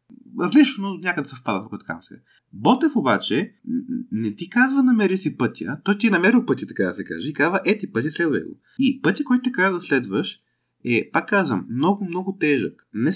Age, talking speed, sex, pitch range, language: 20-39, 180 wpm, male, 110-170 Hz, Bulgarian